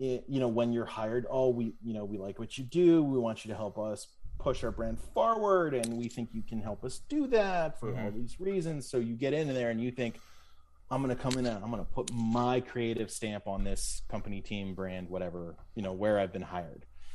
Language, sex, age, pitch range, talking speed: English, male, 30-49, 105-125 Hz, 245 wpm